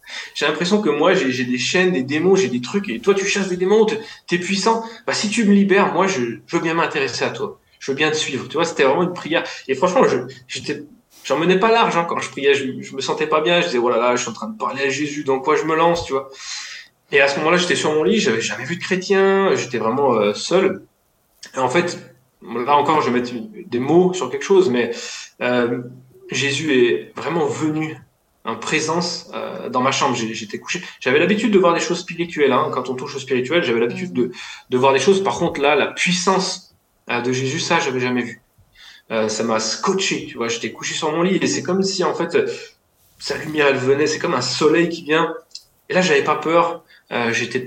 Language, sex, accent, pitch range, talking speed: French, male, French, 130-185 Hz, 245 wpm